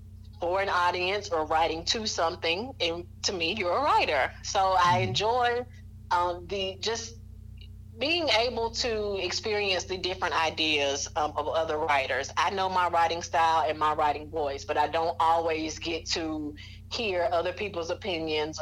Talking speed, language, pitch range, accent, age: 160 wpm, English, 140-185 Hz, American, 30-49